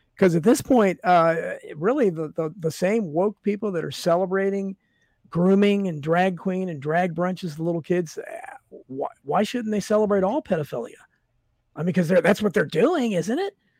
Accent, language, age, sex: American, English, 50-69, male